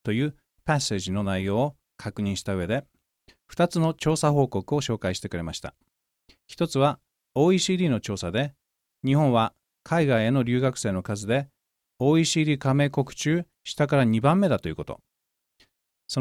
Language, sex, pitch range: Japanese, male, 110-160 Hz